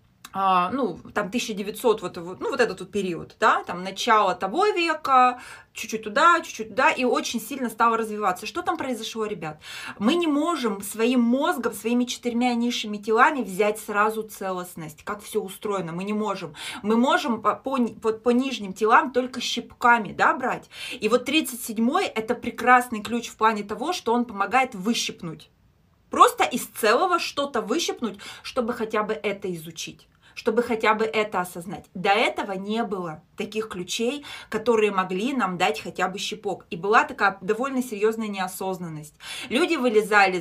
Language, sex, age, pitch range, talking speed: Russian, female, 20-39, 195-245 Hz, 155 wpm